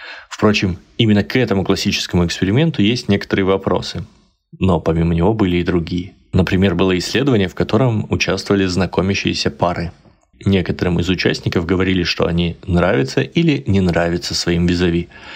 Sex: male